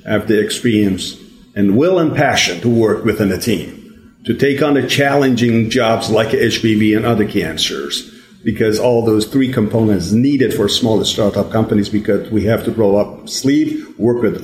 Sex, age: male, 50-69